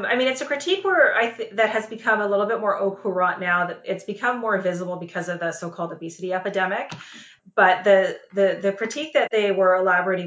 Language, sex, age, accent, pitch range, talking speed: English, female, 30-49, American, 170-195 Hz, 210 wpm